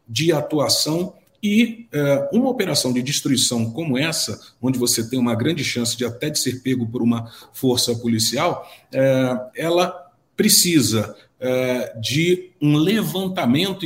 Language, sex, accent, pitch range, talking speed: Portuguese, male, Brazilian, 125-165 Hz, 140 wpm